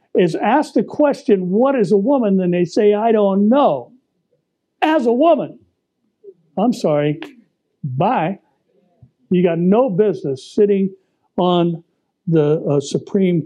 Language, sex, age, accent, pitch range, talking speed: English, male, 60-79, American, 145-195 Hz, 130 wpm